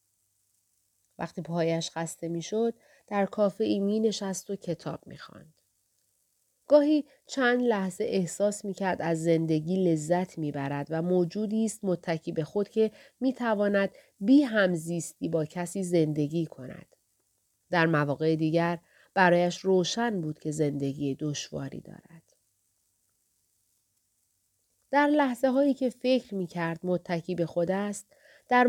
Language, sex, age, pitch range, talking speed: Persian, female, 30-49, 165-220 Hz, 125 wpm